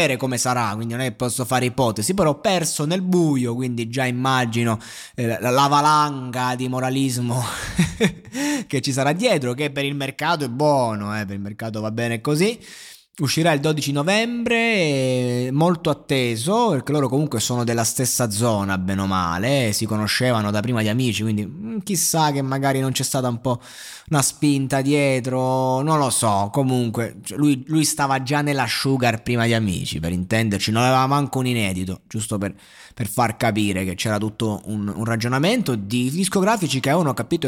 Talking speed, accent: 180 wpm, native